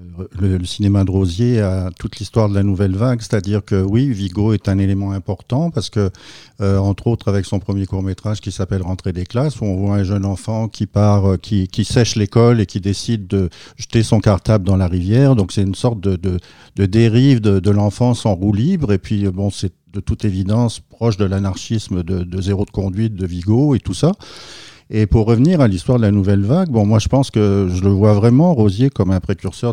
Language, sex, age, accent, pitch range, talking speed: French, male, 50-69, French, 100-115 Hz, 230 wpm